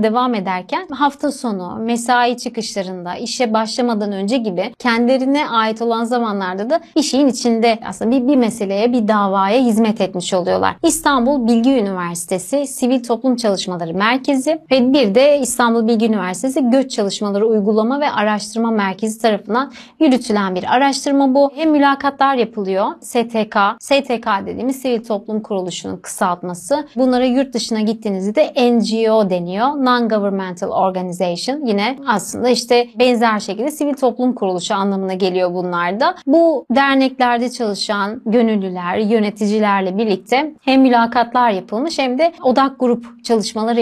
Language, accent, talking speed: Turkish, native, 130 wpm